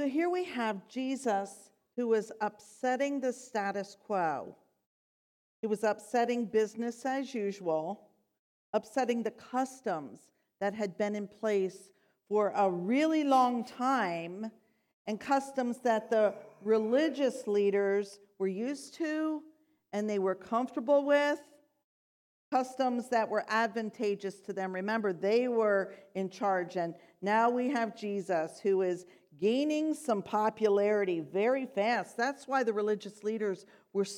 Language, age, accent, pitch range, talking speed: English, 50-69, American, 200-260 Hz, 130 wpm